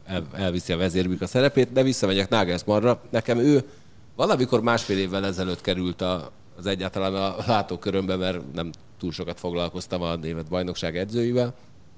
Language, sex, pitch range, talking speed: Hungarian, male, 85-105 Hz, 140 wpm